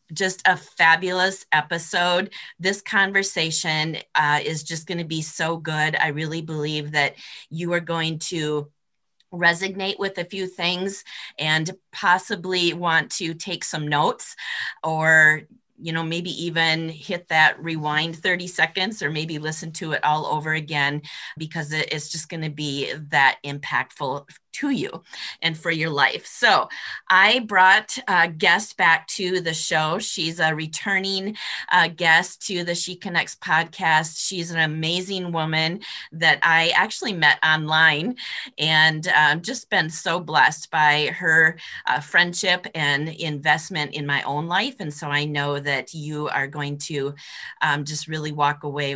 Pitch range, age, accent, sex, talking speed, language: 150-175 Hz, 30-49, American, female, 150 wpm, English